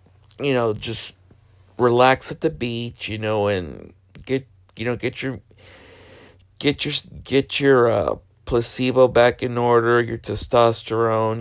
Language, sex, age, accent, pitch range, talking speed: English, male, 50-69, American, 100-130 Hz, 135 wpm